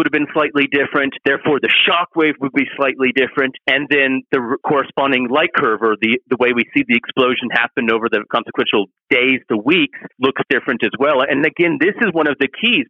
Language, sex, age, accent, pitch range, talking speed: English, male, 40-59, American, 120-150 Hz, 210 wpm